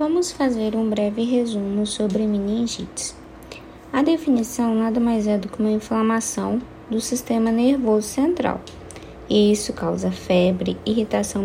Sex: female